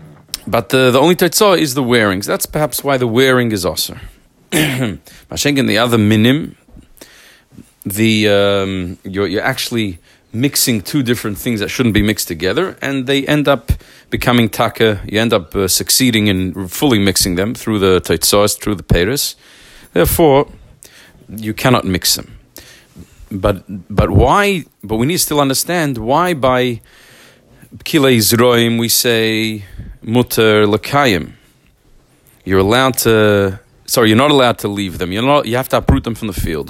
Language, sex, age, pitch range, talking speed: English, male, 40-59, 105-140 Hz, 160 wpm